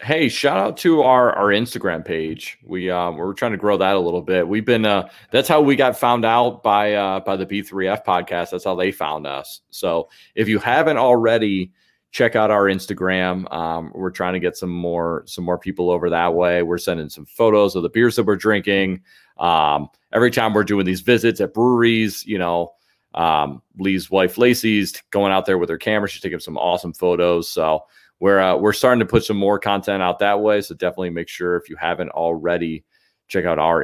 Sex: male